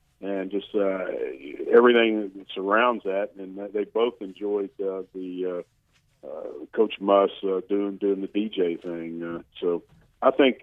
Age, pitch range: 50-69, 95-110 Hz